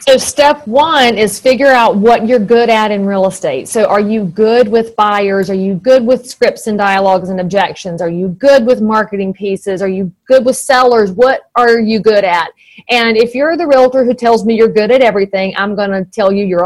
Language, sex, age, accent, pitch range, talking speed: English, female, 40-59, American, 200-245 Hz, 225 wpm